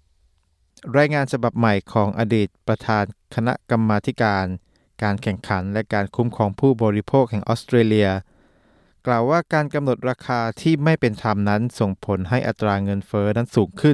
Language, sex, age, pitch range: Thai, male, 20-39, 105-130 Hz